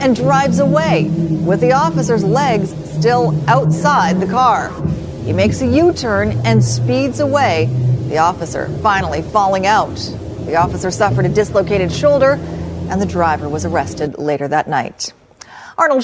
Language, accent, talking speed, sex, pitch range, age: English, American, 140 wpm, female, 180-255 Hz, 40-59